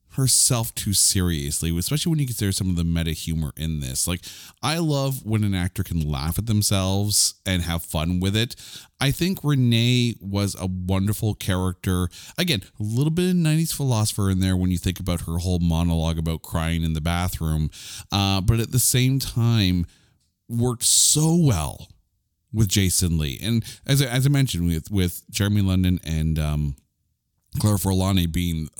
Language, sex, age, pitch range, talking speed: English, male, 30-49, 85-120 Hz, 175 wpm